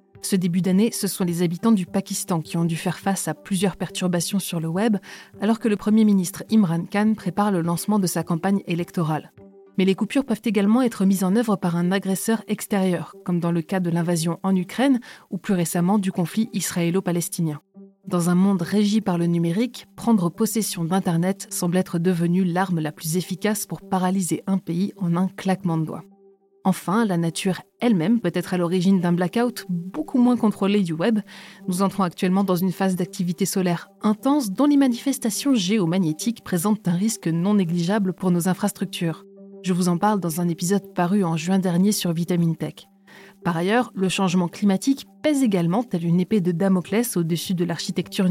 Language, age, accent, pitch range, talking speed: French, 30-49, French, 175-210 Hz, 190 wpm